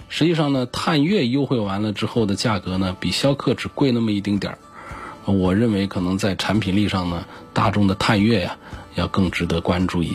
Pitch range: 95-120 Hz